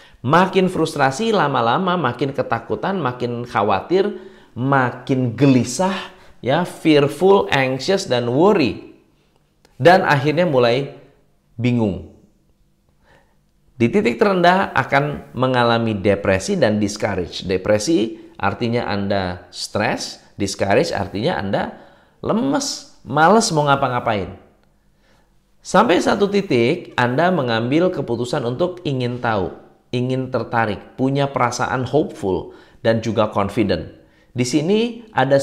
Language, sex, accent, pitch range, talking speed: Indonesian, male, native, 110-155 Hz, 95 wpm